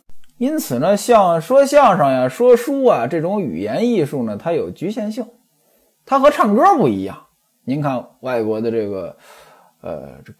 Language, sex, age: Chinese, male, 20-39